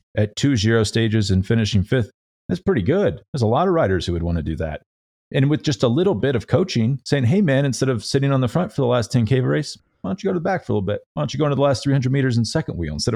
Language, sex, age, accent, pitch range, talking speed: English, male, 40-59, American, 95-125 Hz, 305 wpm